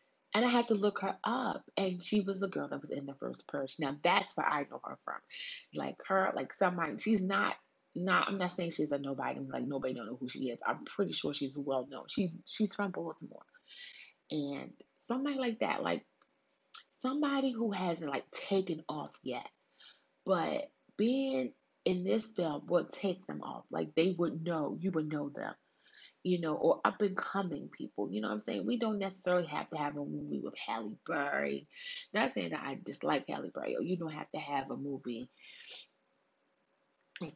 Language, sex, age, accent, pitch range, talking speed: English, female, 30-49, American, 150-205 Hz, 190 wpm